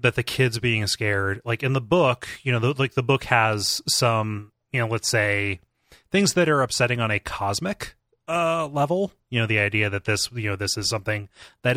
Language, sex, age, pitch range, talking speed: English, male, 30-49, 105-125 Hz, 215 wpm